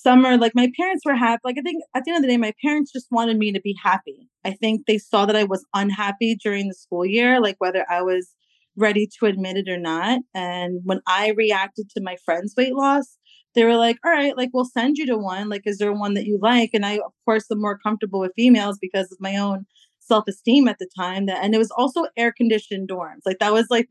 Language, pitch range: English, 200-245 Hz